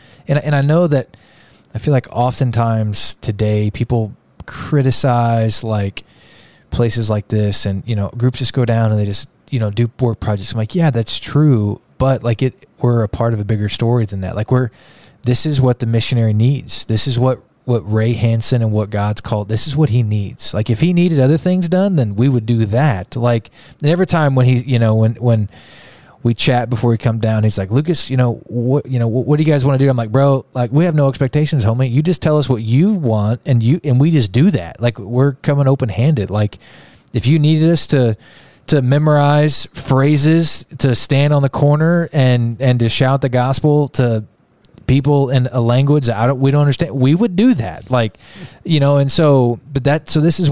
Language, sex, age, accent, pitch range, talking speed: English, male, 20-39, American, 115-145 Hz, 220 wpm